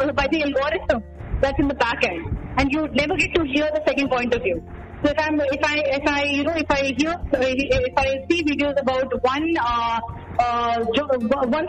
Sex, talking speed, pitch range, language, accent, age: female, 235 wpm, 245-300 Hz, Hindi, native, 20-39